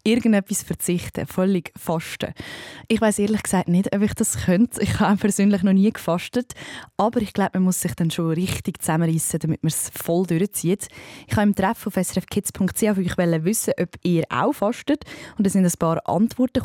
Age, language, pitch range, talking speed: 20-39, German, 170-215 Hz, 185 wpm